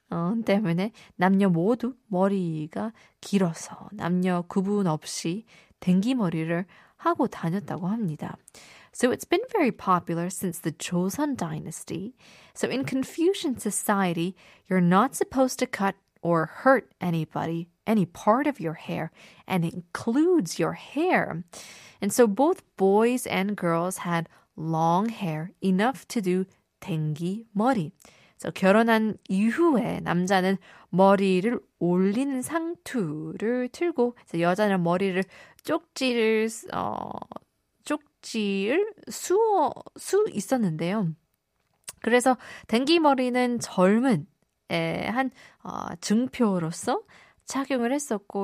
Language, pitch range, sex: Korean, 175-245 Hz, female